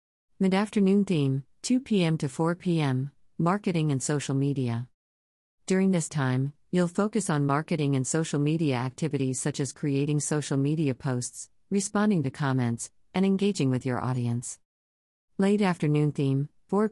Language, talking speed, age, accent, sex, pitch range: English, 140 wpm, 50-69, American, female, 125-165 Hz